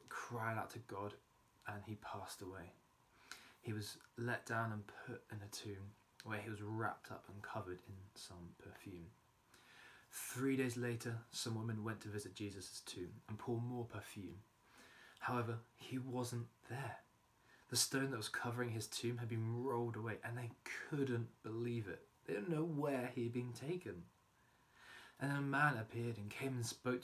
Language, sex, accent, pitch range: English, male, British, 110-125 Hz